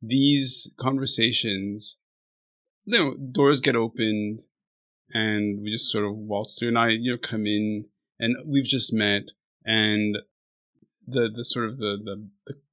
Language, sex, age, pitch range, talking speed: English, male, 20-39, 105-130 Hz, 145 wpm